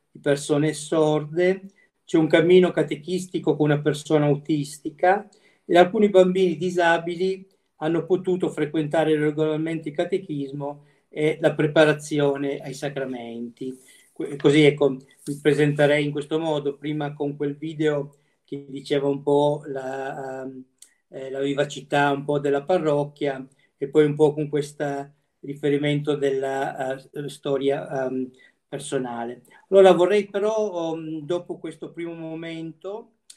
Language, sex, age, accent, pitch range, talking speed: Italian, male, 40-59, native, 145-165 Hz, 130 wpm